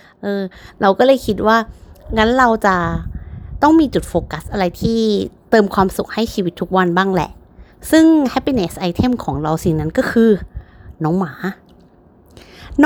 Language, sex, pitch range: Thai, female, 175-250 Hz